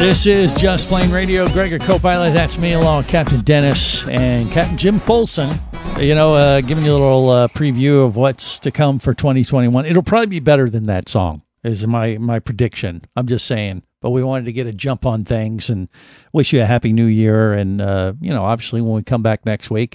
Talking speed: 220 wpm